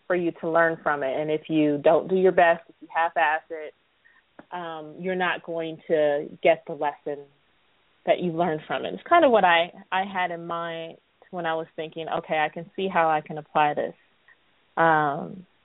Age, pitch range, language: 30-49, 165-210 Hz, English